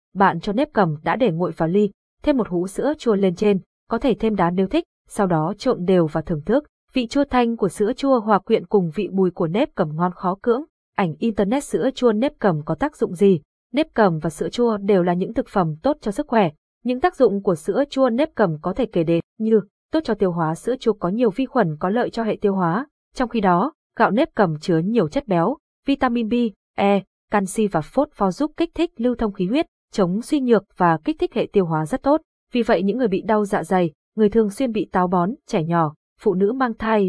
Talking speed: 250 wpm